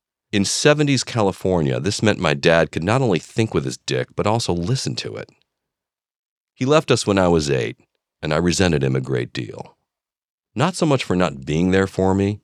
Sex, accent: male, American